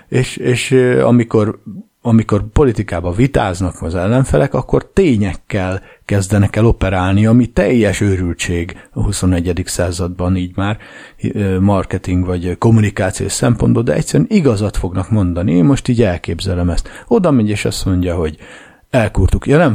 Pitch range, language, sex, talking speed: 90-120 Hz, Hungarian, male, 135 wpm